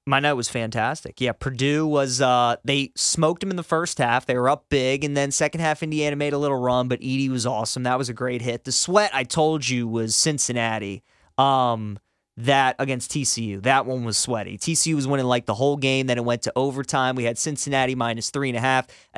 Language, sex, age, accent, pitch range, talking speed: English, male, 30-49, American, 125-160 Hz, 215 wpm